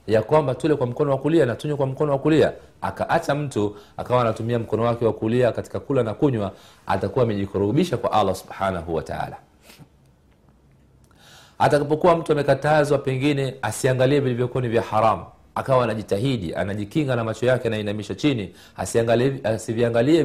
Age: 40-59